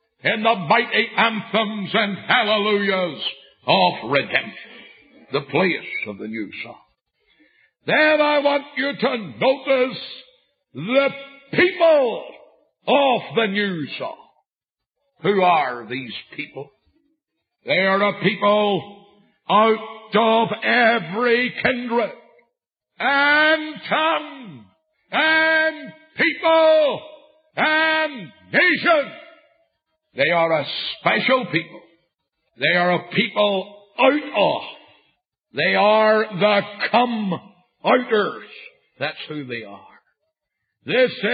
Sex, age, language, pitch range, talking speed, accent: male, 60-79, English, 200-310 Hz, 95 wpm, American